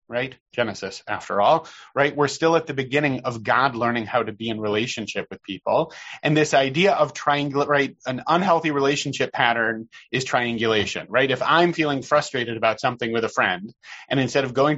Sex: male